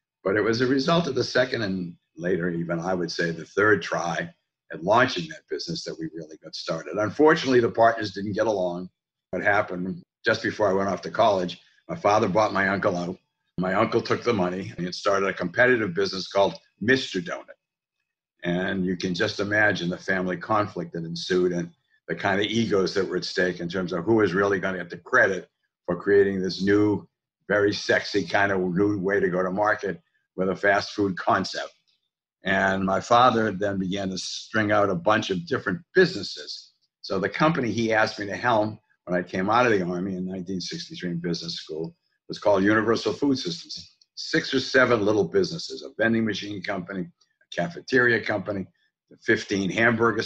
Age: 60-79